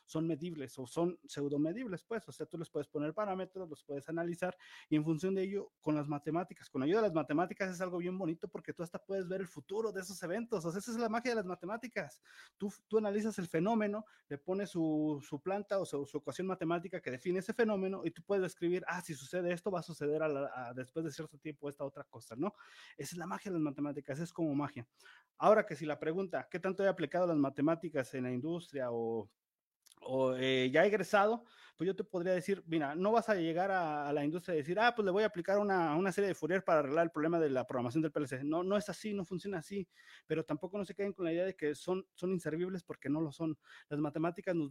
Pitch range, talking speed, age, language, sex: 155-195 Hz, 250 wpm, 30-49, Spanish, male